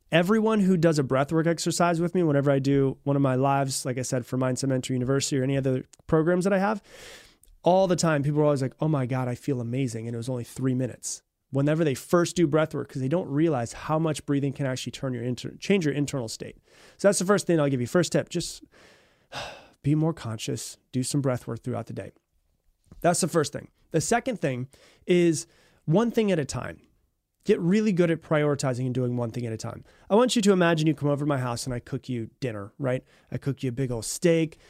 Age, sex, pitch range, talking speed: 30-49, male, 130-170 Hz, 240 wpm